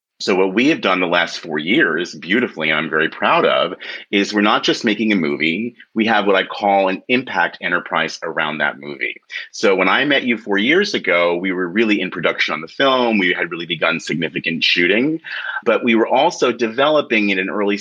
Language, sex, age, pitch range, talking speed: English, male, 30-49, 95-115 Hz, 210 wpm